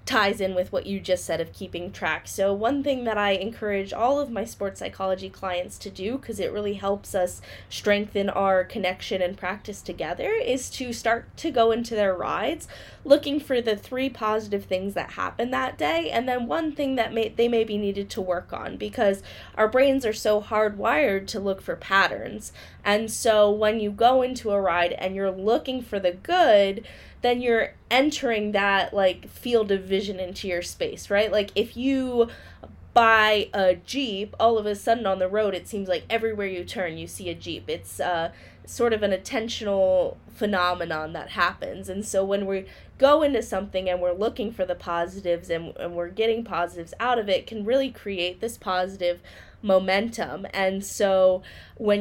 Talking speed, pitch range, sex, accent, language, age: 190 wpm, 190-230 Hz, female, American, English, 20-39